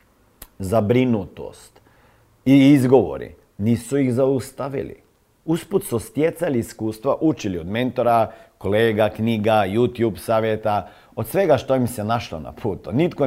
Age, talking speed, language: 50-69, 120 wpm, Croatian